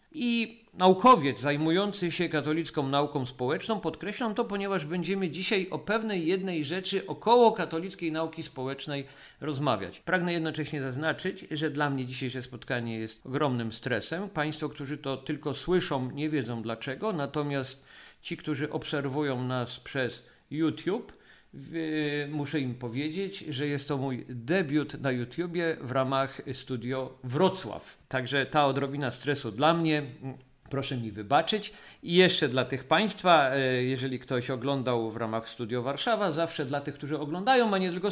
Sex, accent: male, native